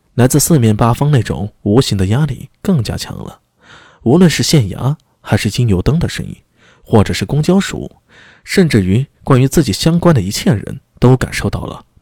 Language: Chinese